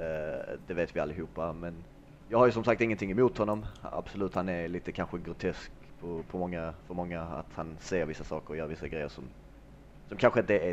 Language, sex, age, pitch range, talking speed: Swedish, male, 30-49, 85-105 Hz, 215 wpm